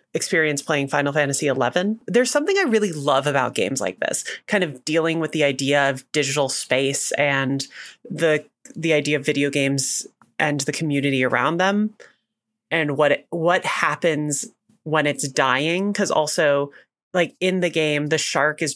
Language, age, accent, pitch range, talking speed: English, 30-49, American, 145-175 Hz, 165 wpm